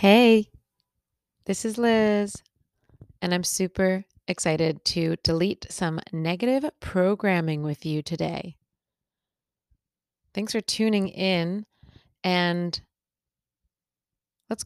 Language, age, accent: English, 20-39, American